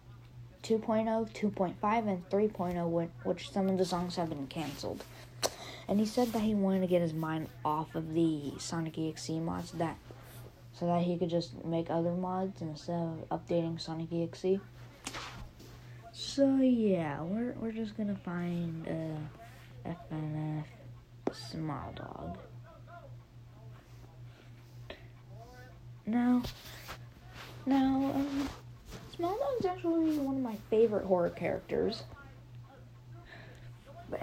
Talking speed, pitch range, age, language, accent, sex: 115 wpm, 125-190 Hz, 20-39, English, American, female